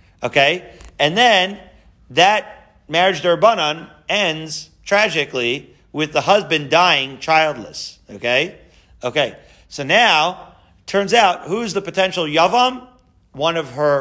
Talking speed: 110 wpm